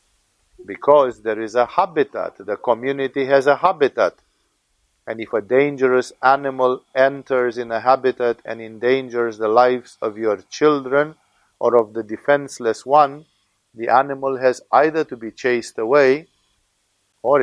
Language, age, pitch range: English, 50-69, 110-140 Hz